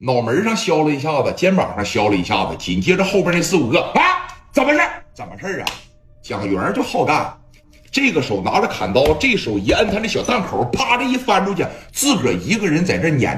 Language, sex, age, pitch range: Chinese, male, 60-79, 125-210 Hz